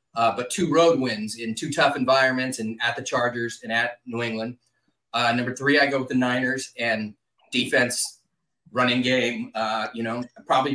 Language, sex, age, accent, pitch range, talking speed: English, male, 30-49, American, 120-140 Hz, 185 wpm